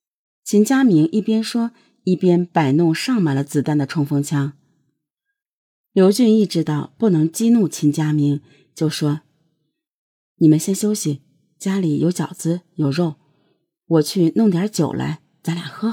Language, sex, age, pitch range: Chinese, female, 30-49, 150-205 Hz